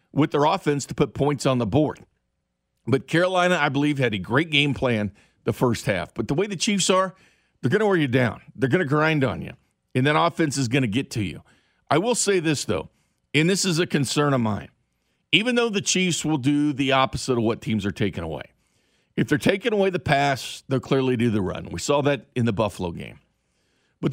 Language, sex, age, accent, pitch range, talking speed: English, male, 50-69, American, 120-155 Hz, 230 wpm